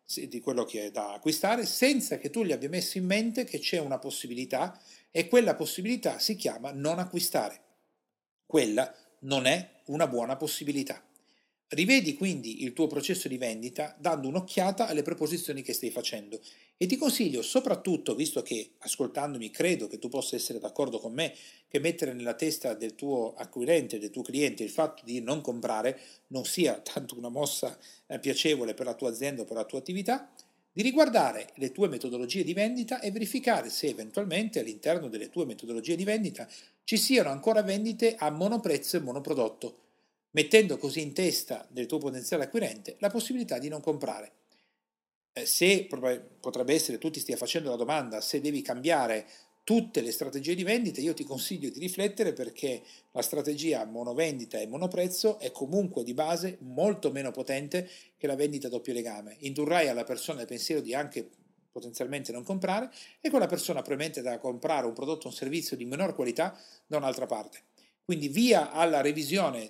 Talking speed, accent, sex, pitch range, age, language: 170 wpm, native, male, 130-195 Hz, 40-59, Italian